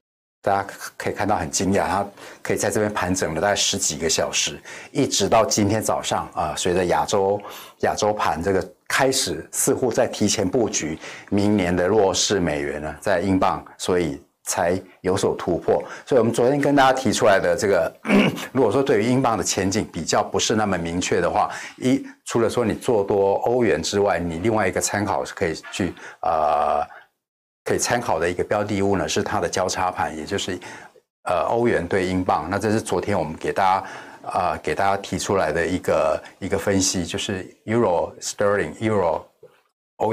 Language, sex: Chinese, male